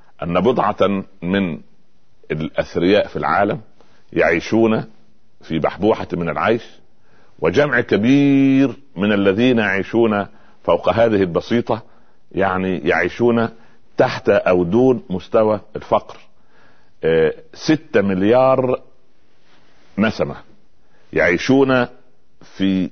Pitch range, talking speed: 95-130 Hz, 80 wpm